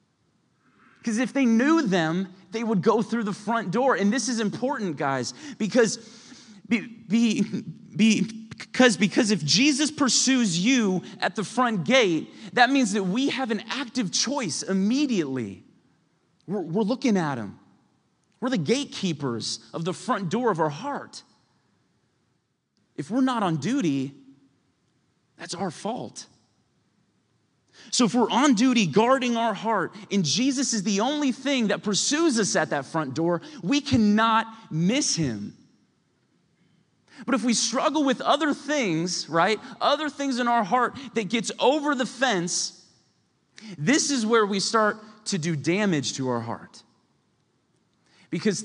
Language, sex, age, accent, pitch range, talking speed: English, male, 30-49, American, 180-250 Hz, 140 wpm